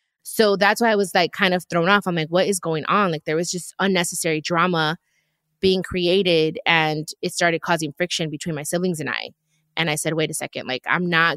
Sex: female